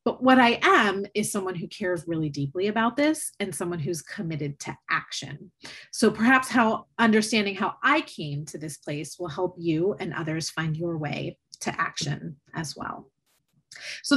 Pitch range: 160-230 Hz